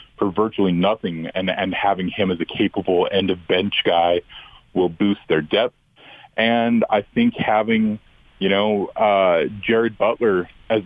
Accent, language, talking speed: American, English, 155 wpm